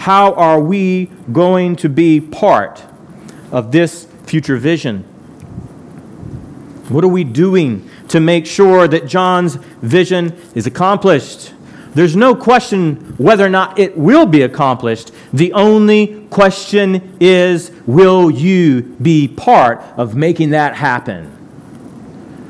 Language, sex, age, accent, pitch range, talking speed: English, male, 40-59, American, 160-205 Hz, 120 wpm